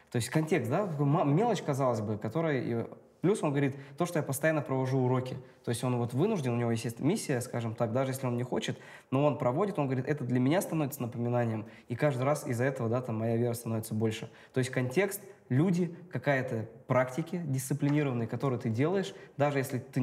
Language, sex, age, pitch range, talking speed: Russian, male, 20-39, 115-140 Hz, 200 wpm